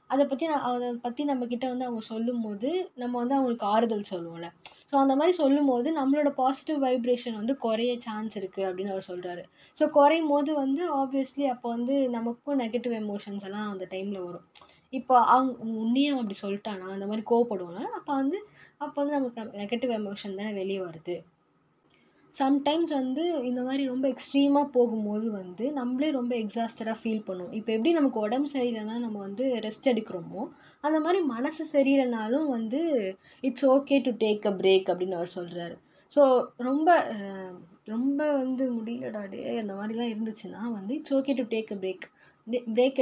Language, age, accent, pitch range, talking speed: Tamil, 20-39, native, 210-275 Hz, 155 wpm